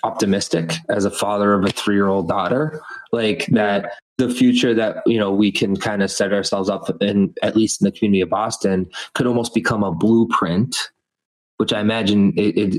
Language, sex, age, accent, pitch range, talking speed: English, male, 20-39, American, 95-110 Hz, 190 wpm